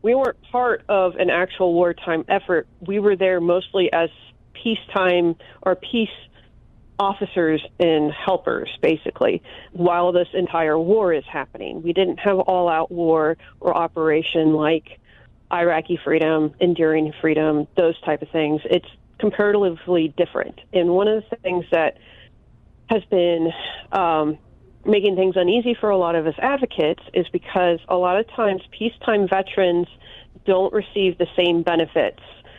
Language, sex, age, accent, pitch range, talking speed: English, female, 40-59, American, 165-190 Hz, 140 wpm